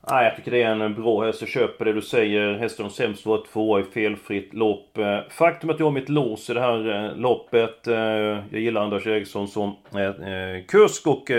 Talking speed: 200 wpm